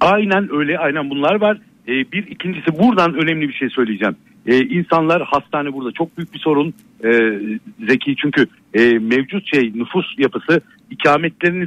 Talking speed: 155 wpm